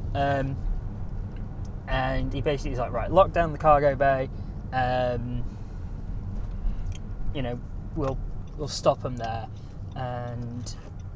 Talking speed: 115 wpm